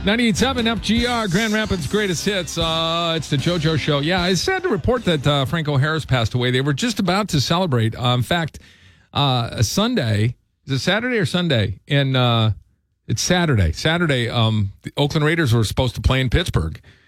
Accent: American